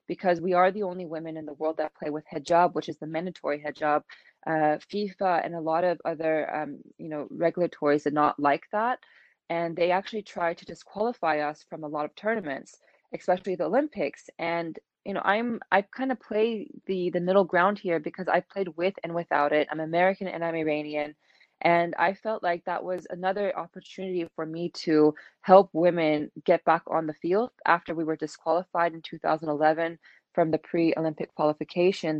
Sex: female